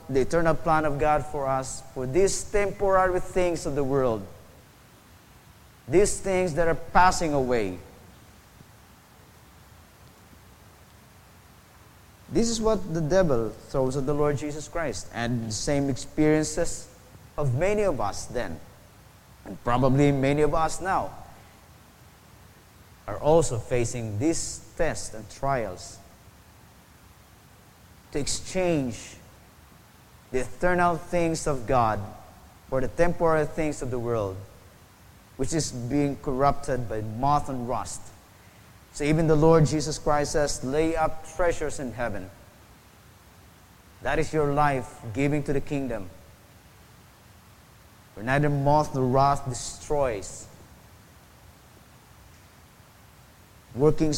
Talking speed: 115 wpm